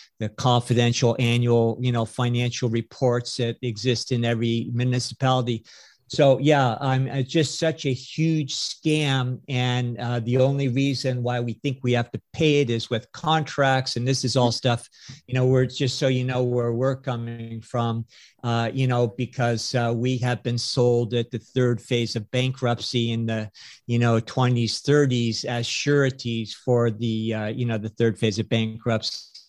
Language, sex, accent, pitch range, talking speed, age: English, male, American, 120-140 Hz, 175 wpm, 50-69